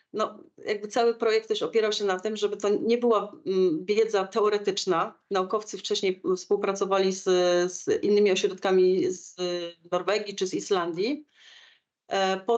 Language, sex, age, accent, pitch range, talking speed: Polish, female, 30-49, native, 190-230 Hz, 135 wpm